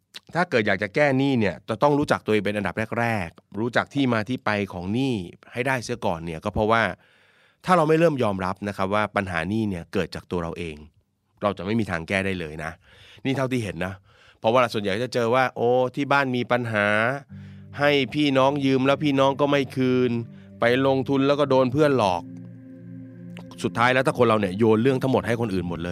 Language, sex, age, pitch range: Thai, male, 30-49, 95-120 Hz